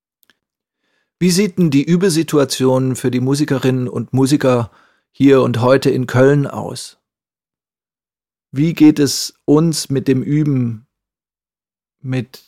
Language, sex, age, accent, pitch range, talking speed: German, male, 40-59, German, 130-150 Hz, 115 wpm